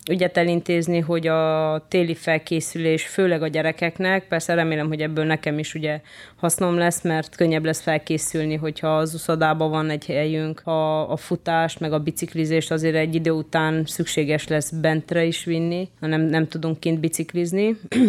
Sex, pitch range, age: female, 160-190 Hz, 20-39